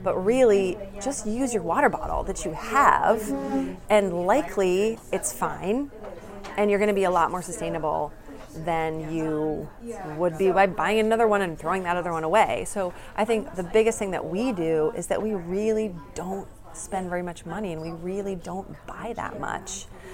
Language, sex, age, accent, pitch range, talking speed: English, female, 30-49, American, 160-205 Hz, 180 wpm